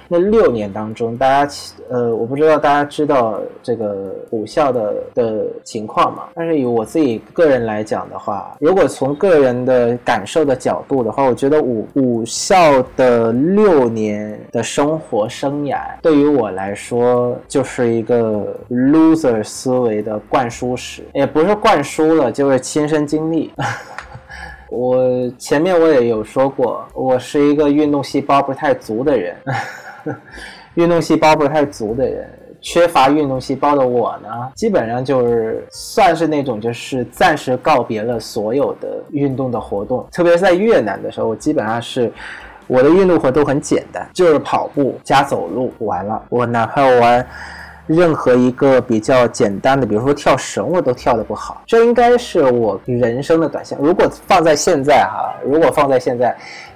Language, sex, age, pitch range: Vietnamese, male, 20-39, 120-155 Hz